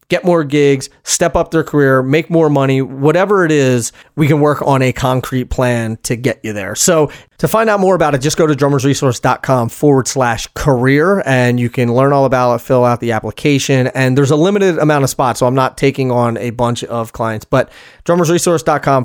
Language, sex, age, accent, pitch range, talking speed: English, male, 30-49, American, 125-150 Hz, 210 wpm